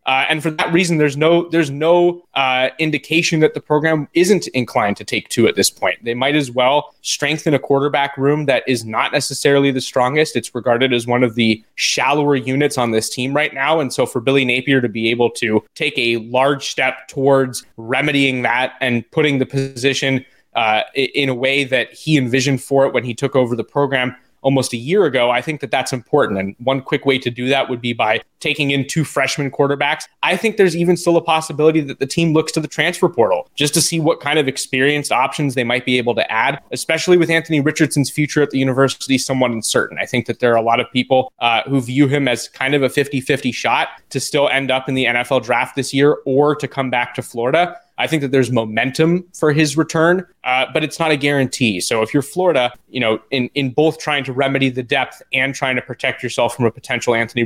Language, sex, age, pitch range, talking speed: English, male, 20-39, 125-150 Hz, 230 wpm